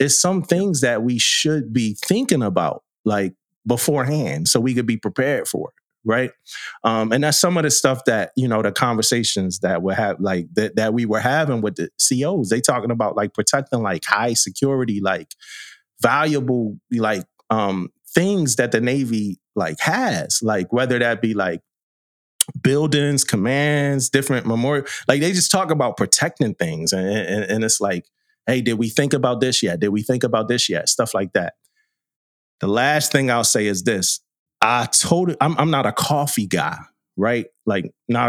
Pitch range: 105-145 Hz